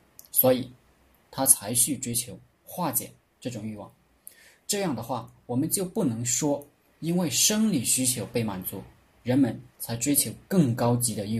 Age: 20-39